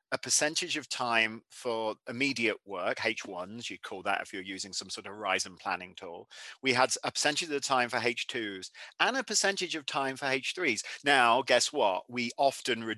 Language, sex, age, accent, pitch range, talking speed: English, male, 40-59, British, 110-135 Hz, 190 wpm